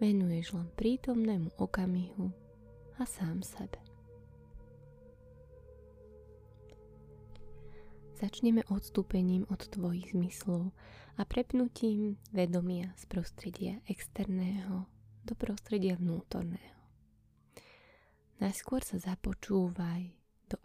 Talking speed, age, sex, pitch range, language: 75 wpm, 20-39, female, 165-205 Hz, Slovak